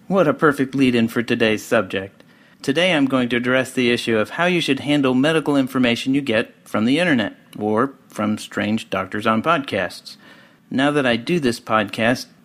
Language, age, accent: English, 40-59, American